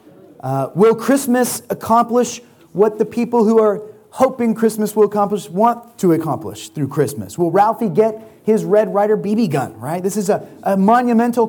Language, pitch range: English, 150-210 Hz